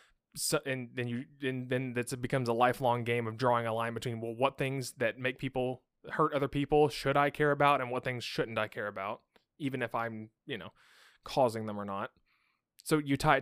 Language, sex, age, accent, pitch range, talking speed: English, male, 20-39, American, 115-145 Hz, 220 wpm